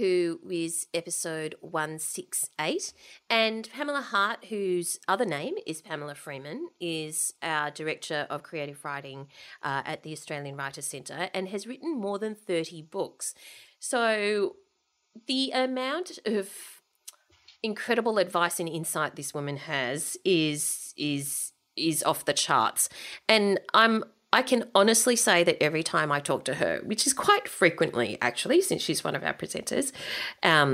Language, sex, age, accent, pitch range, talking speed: English, female, 30-49, Australian, 155-225 Hz, 145 wpm